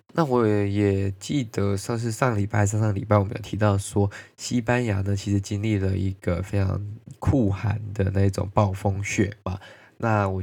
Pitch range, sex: 100-110 Hz, male